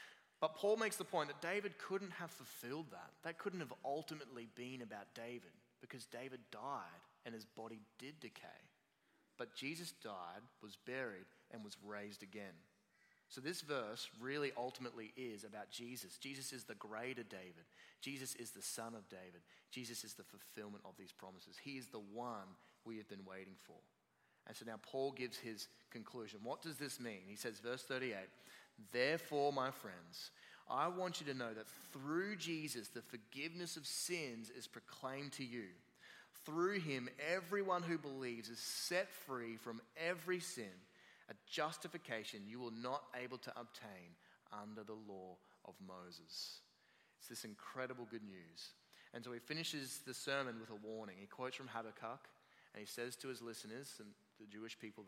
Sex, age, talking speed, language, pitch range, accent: male, 20-39, 170 wpm, English, 110-145 Hz, Australian